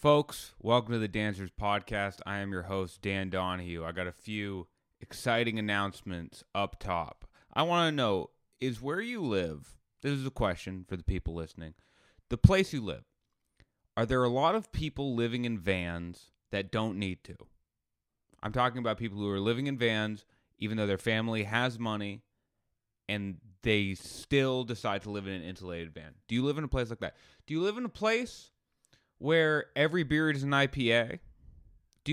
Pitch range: 100-135 Hz